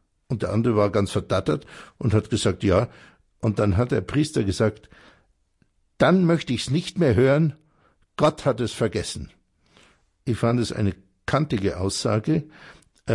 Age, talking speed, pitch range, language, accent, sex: 60-79, 150 wpm, 100-135 Hz, German, German, male